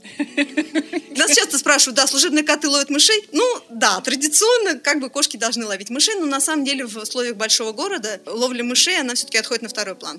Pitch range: 195-275 Hz